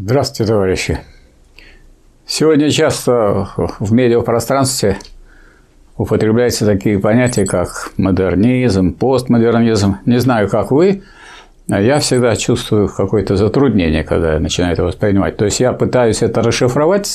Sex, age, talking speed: male, 50-69, 110 wpm